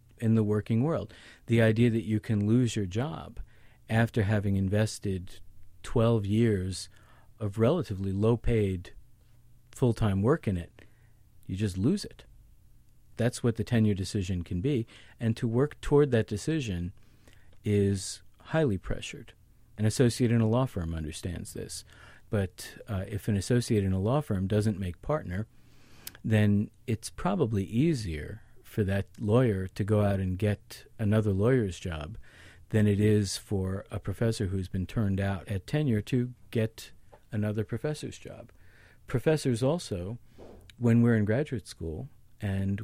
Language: English